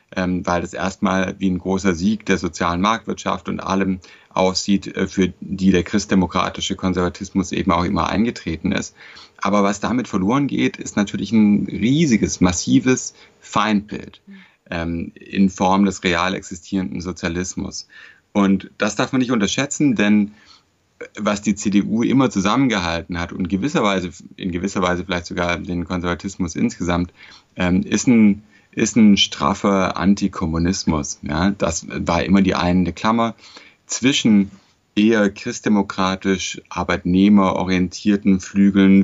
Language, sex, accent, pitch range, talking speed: German, male, German, 90-100 Hz, 125 wpm